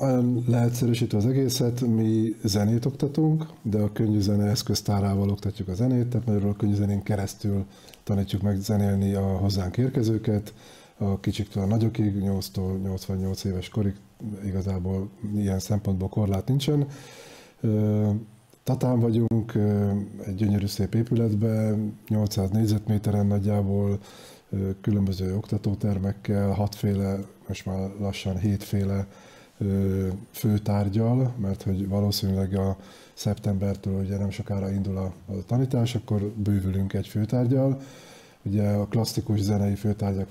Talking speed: 110 wpm